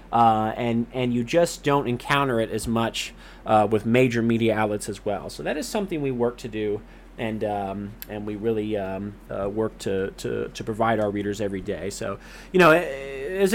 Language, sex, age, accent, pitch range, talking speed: English, male, 30-49, American, 110-140 Hz, 200 wpm